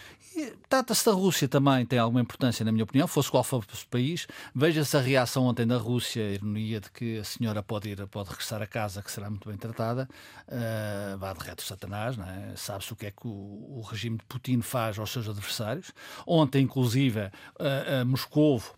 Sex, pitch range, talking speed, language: male, 110-140 Hz, 210 wpm, Portuguese